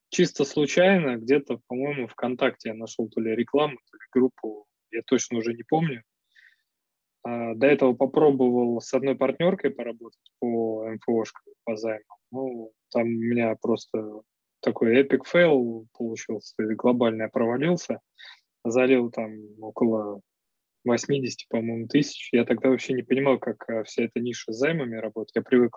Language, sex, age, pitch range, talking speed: Russian, male, 20-39, 115-135 Hz, 140 wpm